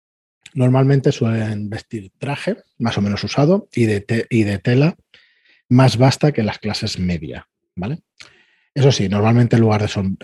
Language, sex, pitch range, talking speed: Spanish, male, 95-120 Hz, 165 wpm